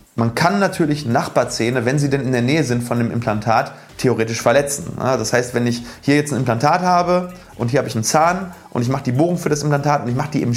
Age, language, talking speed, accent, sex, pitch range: 30-49, German, 250 wpm, German, male, 120-155 Hz